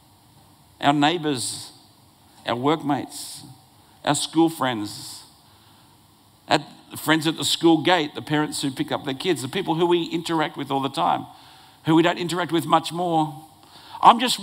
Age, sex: 50-69, male